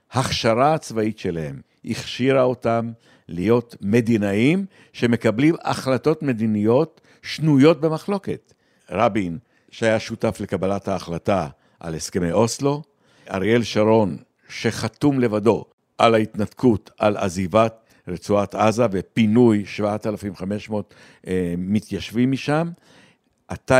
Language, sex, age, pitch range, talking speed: Hebrew, male, 60-79, 95-125 Hz, 90 wpm